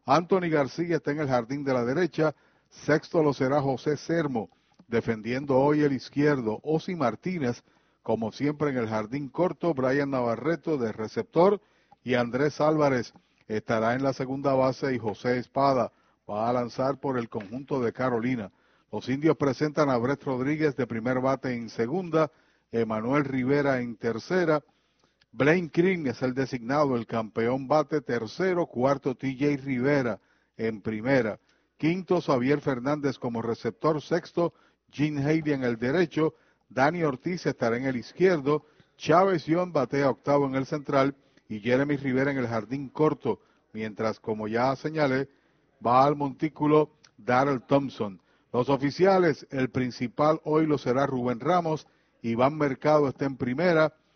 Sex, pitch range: male, 125-155 Hz